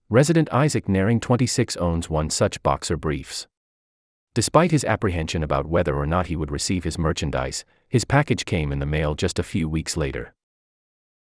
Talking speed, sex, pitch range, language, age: 170 wpm, male, 75-125 Hz, English, 30-49